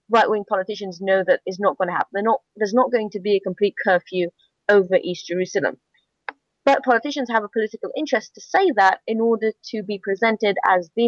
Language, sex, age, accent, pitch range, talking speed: English, female, 30-49, British, 180-230 Hz, 205 wpm